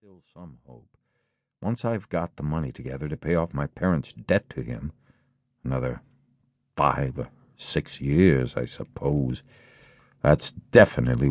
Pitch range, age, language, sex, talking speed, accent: 80-125 Hz, 60-79, English, male, 140 wpm, American